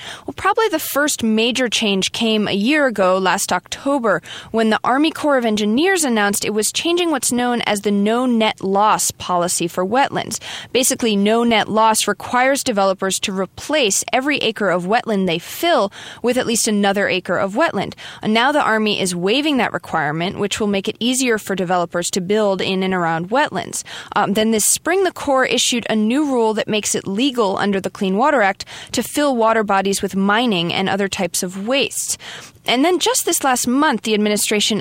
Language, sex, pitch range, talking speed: English, female, 195-255 Hz, 190 wpm